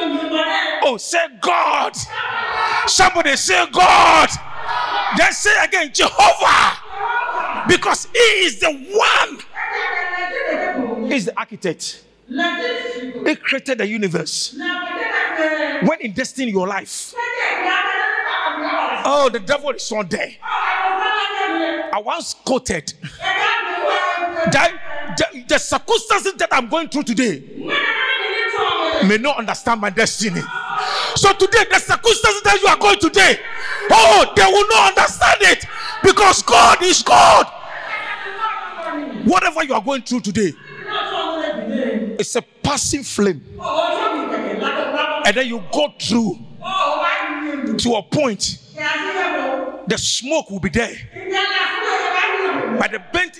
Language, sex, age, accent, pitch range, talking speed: English, male, 40-59, Nigerian, 260-400 Hz, 110 wpm